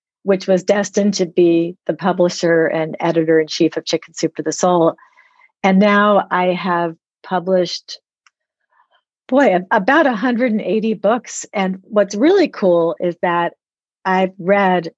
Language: English